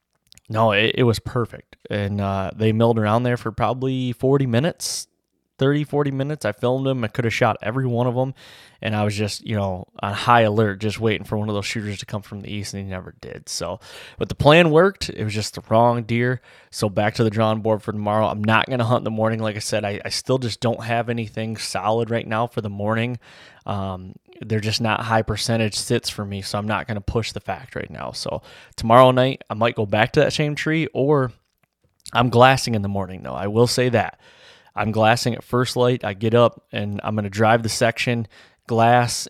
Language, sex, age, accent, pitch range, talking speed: English, male, 20-39, American, 105-120 Hz, 230 wpm